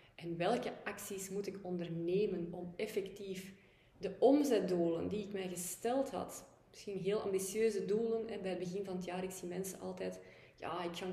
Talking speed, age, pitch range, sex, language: 180 wpm, 20-39, 180-200 Hz, female, Dutch